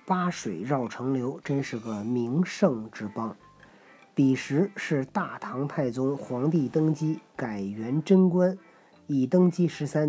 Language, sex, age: Chinese, male, 40-59